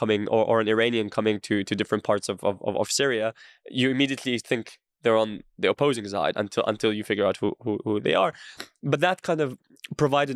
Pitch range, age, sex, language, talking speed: 115-145 Hz, 20-39, male, English, 215 wpm